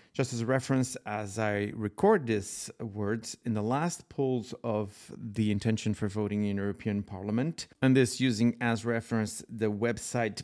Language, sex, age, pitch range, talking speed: English, male, 40-59, 105-135 Hz, 160 wpm